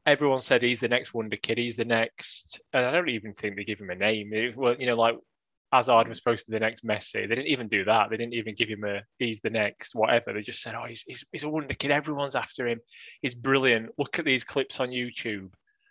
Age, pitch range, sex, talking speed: 20-39, 115-150 Hz, male, 260 wpm